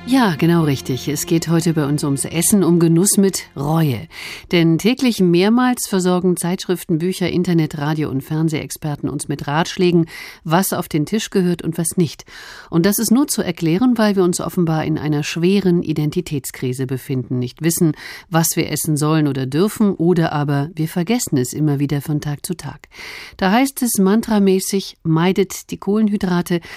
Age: 50-69